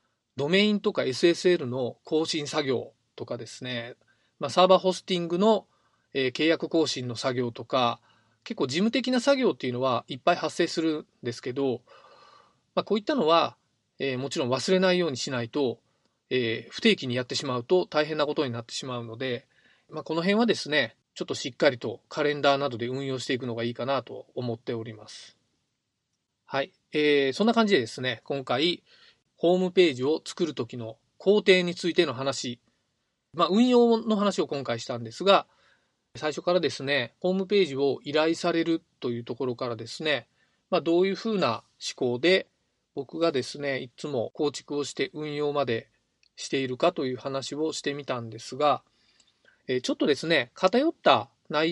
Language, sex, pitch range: Japanese, male, 125-175 Hz